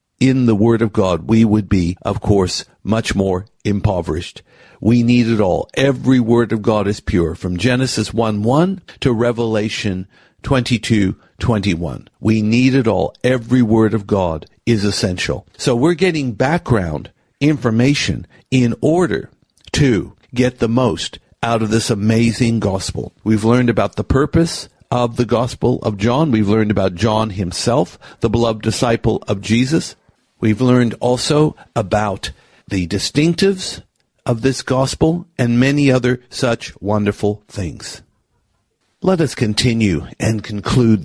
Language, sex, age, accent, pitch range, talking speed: English, male, 60-79, American, 100-125 Hz, 140 wpm